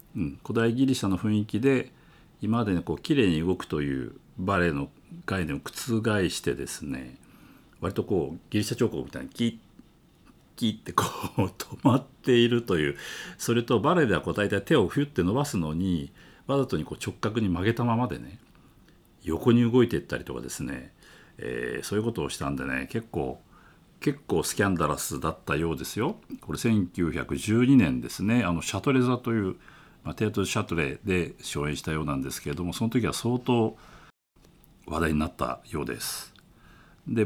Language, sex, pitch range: Japanese, male, 85-120 Hz